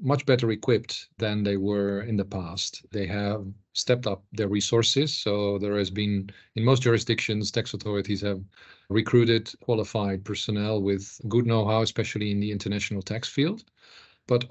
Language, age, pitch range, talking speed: English, 40-59, 100-120 Hz, 155 wpm